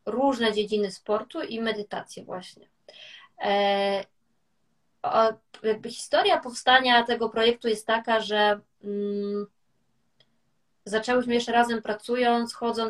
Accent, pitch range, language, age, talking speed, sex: native, 210-235 Hz, Polish, 20-39, 80 wpm, female